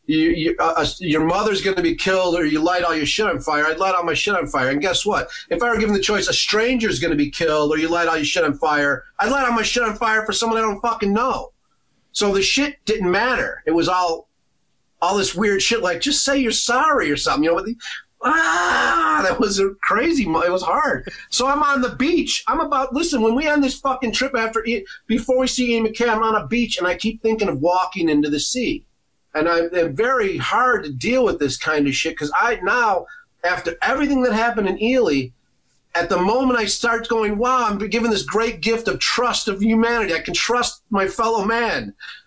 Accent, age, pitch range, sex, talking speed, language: American, 40-59, 190-245 Hz, male, 235 wpm, English